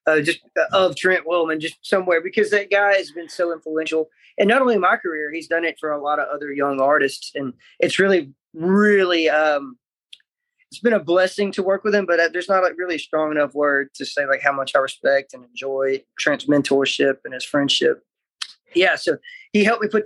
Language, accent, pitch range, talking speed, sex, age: English, American, 150-185 Hz, 215 wpm, male, 20-39